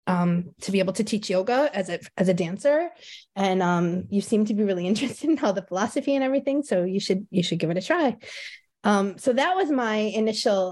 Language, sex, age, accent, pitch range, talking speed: English, female, 20-39, American, 185-225 Hz, 230 wpm